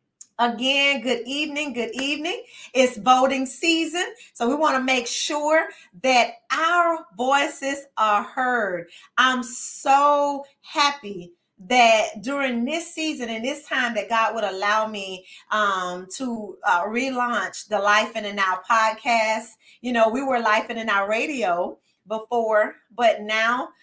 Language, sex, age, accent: English, female, 30-49, American